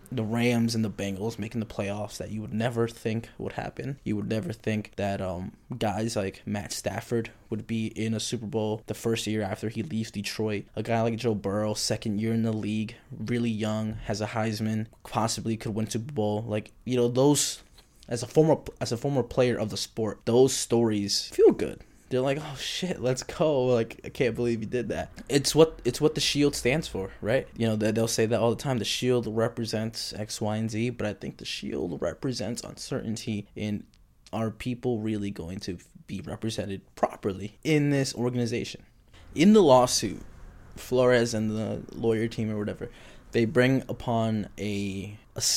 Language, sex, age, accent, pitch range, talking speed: English, male, 20-39, American, 105-120 Hz, 195 wpm